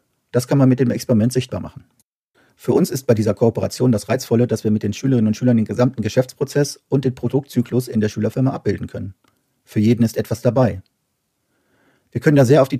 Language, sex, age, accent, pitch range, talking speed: German, male, 40-59, German, 105-125 Hz, 210 wpm